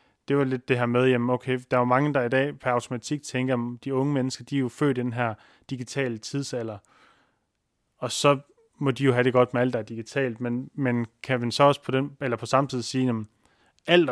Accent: native